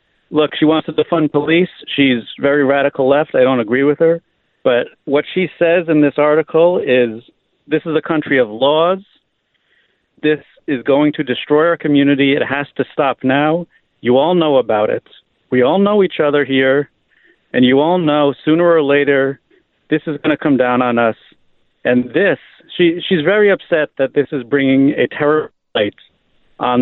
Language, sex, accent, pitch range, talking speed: English, male, American, 130-165 Hz, 180 wpm